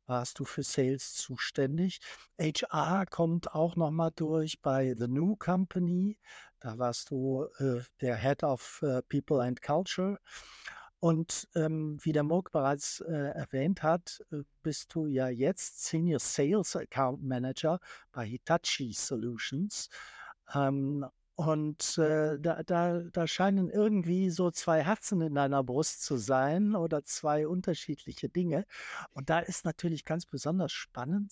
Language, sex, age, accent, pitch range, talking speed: German, male, 60-79, German, 135-170 Hz, 140 wpm